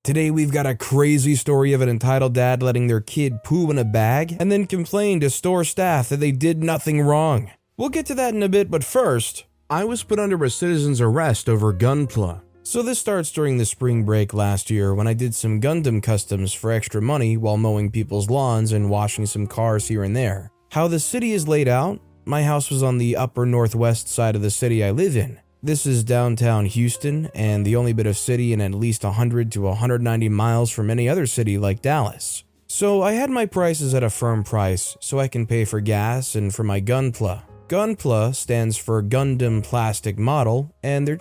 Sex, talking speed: male, 210 wpm